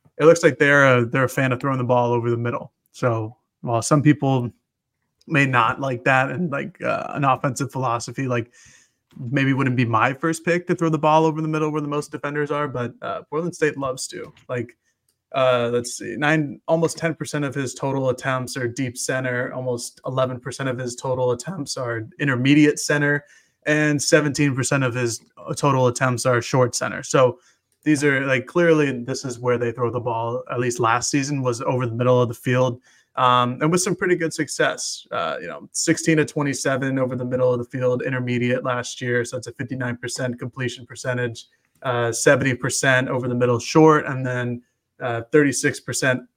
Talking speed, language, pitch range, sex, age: 190 wpm, English, 125-145 Hz, male, 20-39